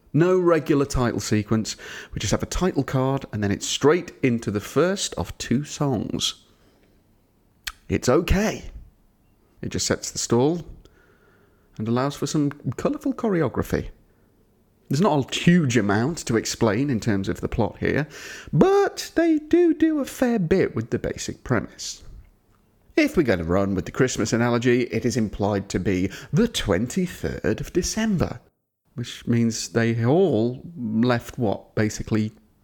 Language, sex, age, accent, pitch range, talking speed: English, male, 30-49, British, 105-150 Hz, 150 wpm